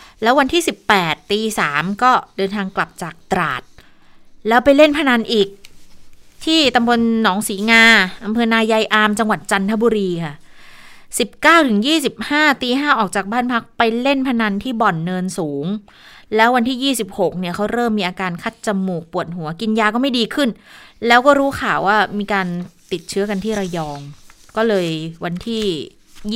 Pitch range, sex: 180-235 Hz, female